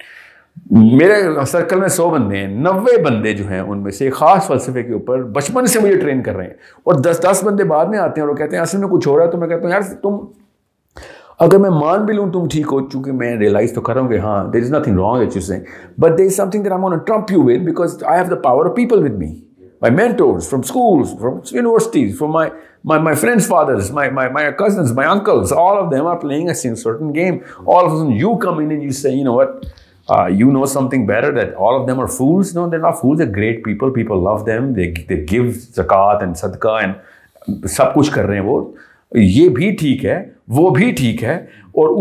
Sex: male